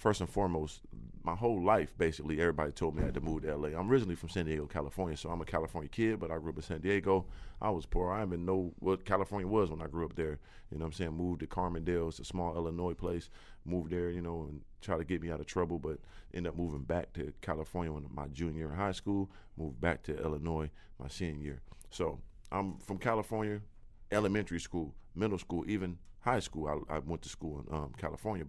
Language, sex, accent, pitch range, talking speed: English, male, American, 80-95 Hz, 240 wpm